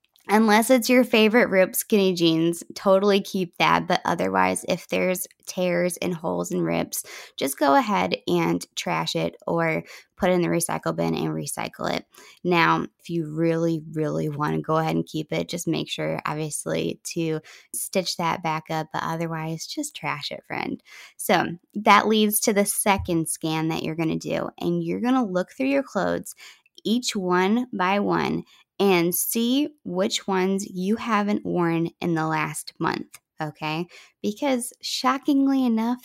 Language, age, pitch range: English, 20-39, 160-215 Hz